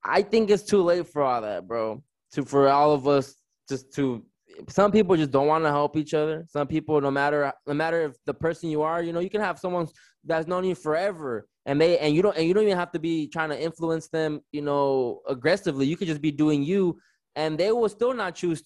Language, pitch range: English, 140-180 Hz